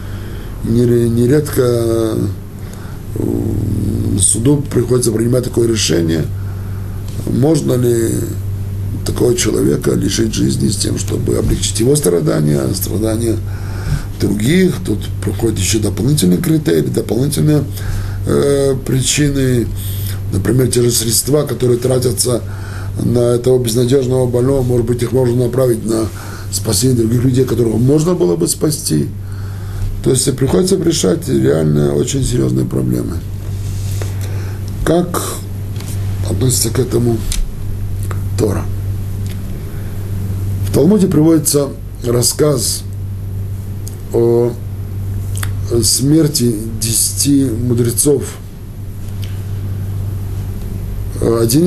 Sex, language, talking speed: male, Russian, 90 wpm